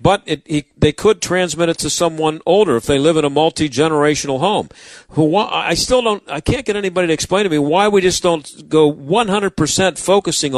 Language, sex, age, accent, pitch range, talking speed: English, male, 50-69, American, 155-190 Hz, 210 wpm